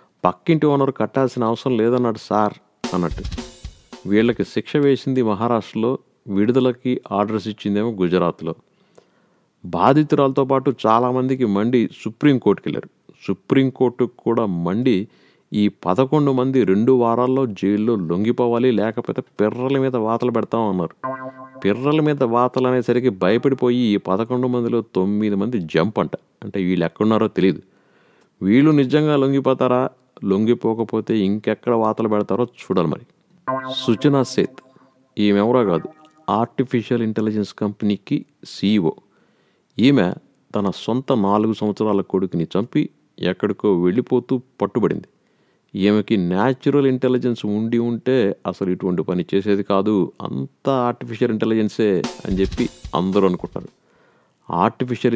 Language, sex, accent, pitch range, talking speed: Telugu, male, native, 105-130 Hz, 105 wpm